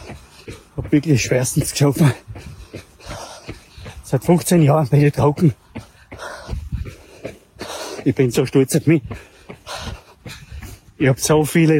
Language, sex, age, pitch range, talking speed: German, male, 30-49, 120-155 Hz, 95 wpm